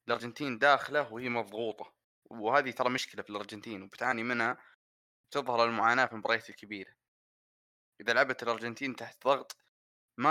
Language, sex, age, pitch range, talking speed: Arabic, male, 20-39, 120-160 Hz, 130 wpm